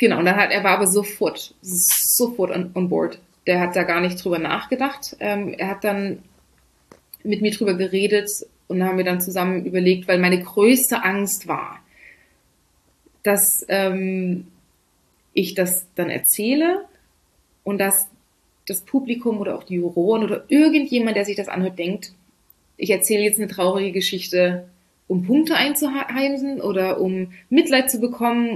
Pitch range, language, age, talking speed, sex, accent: 180-210 Hz, German, 20-39, 155 wpm, female, German